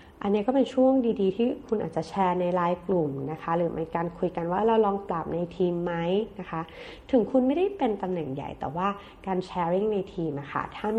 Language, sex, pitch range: Thai, female, 155-210 Hz